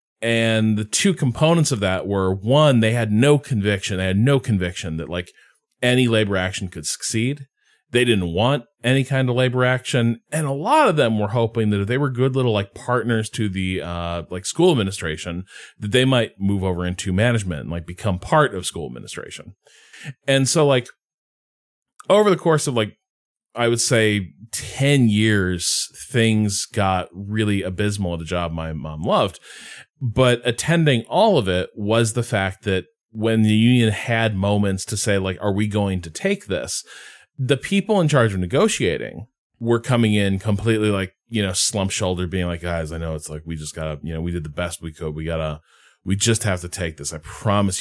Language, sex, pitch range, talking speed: English, male, 90-120 Hz, 195 wpm